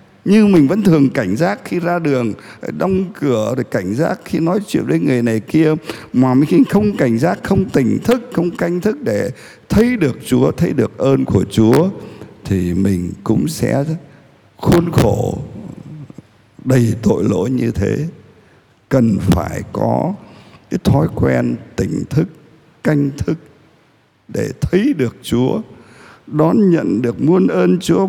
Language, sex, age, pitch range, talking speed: Vietnamese, male, 60-79, 115-170 Hz, 155 wpm